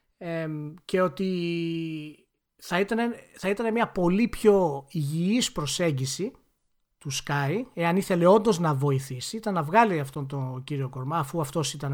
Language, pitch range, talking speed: Greek, 150-205 Hz, 140 wpm